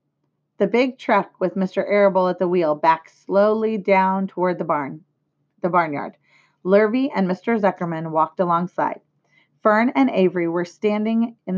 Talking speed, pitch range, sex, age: 150 wpm, 170-225 Hz, female, 30-49